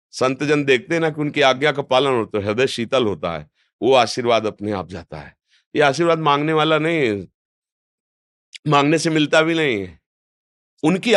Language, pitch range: Hindi, 120-155 Hz